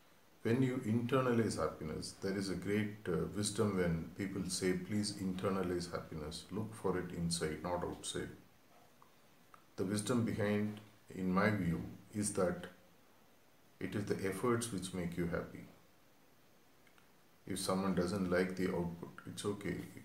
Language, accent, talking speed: English, Indian, 140 wpm